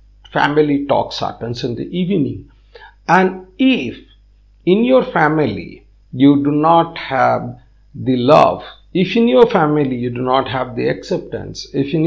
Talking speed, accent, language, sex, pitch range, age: 145 wpm, Indian, English, male, 125-170 Hz, 50-69